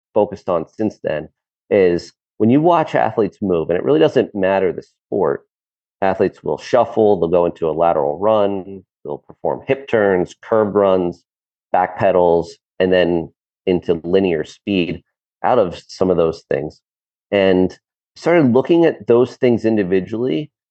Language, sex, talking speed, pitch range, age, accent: English, male, 150 wpm, 90-110 Hz, 30-49, American